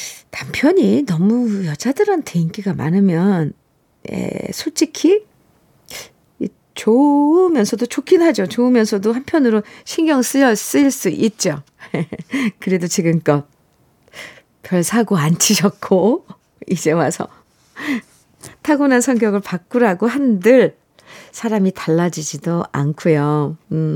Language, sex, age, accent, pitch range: Korean, female, 50-69, native, 180-260 Hz